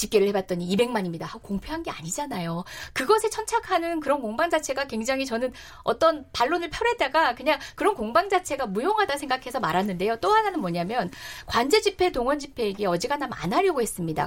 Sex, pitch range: female, 230-370 Hz